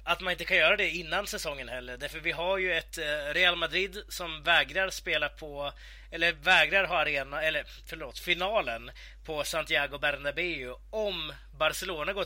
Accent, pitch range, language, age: native, 145-185 Hz, Swedish, 30-49